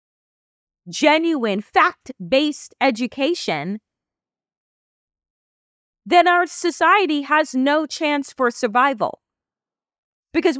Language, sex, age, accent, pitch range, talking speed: English, female, 30-49, American, 245-330 Hz, 70 wpm